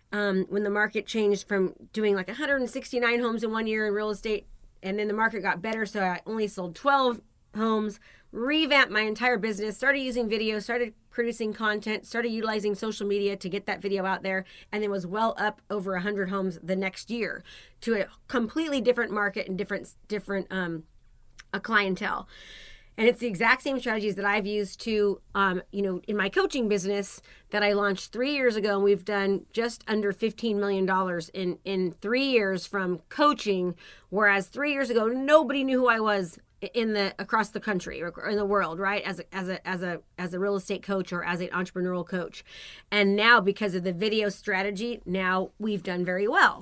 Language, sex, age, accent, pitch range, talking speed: English, female, 30-49, American, 195-230 Hz, 195 wpm